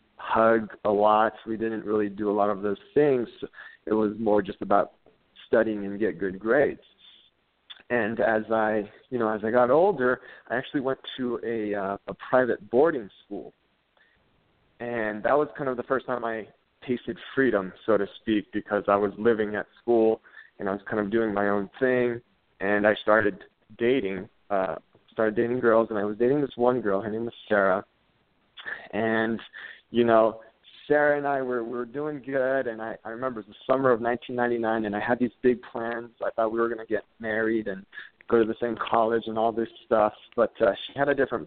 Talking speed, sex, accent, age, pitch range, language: 205 wpm, male, American, 20-39, 105-125 Hz, English